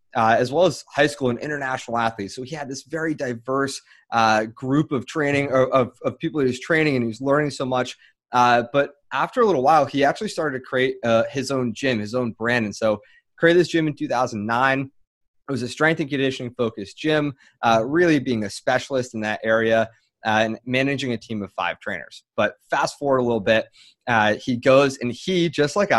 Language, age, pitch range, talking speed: English, 20-39, 115-140 Hz, 220 wpm